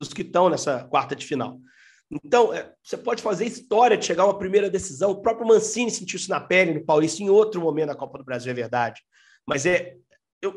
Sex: male